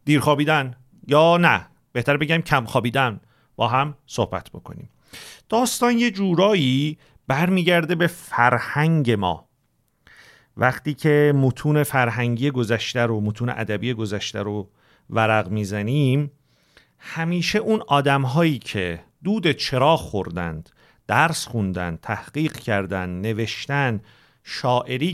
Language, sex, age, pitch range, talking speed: Persian, male, 40-59, 110-160 Hz, 100 wpm